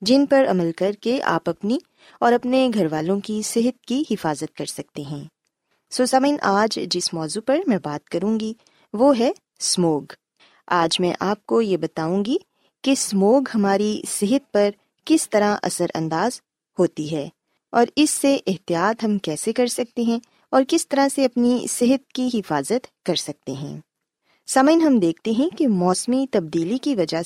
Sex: female